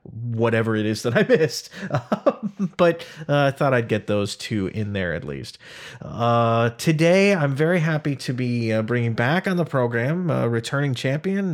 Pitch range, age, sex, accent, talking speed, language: 110-145 Hz, 30-49, male, American, 175 wpm, English